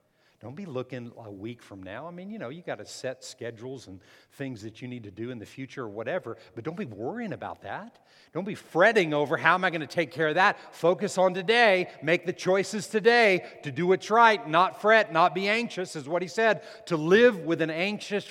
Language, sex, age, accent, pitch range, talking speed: English, male, 50-69, American, 130-210 Hz, 235 wpm